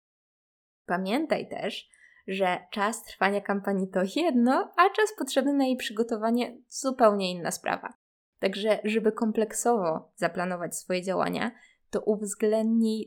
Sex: female